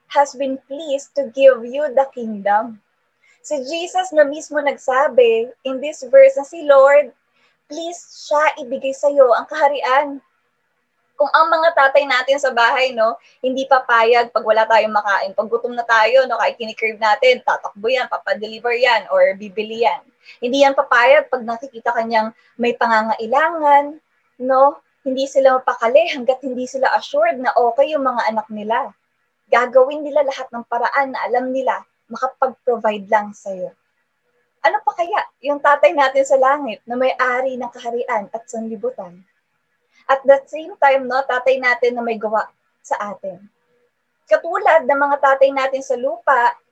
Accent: native